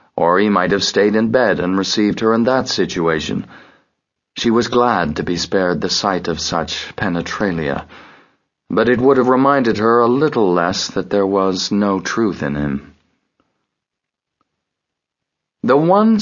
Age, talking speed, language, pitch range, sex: 40-59, 155 wpm, English, 95-130 Hz, male